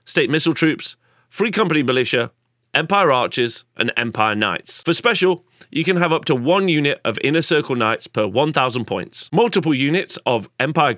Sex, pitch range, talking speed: male, 120-165 Hz, 170 wpm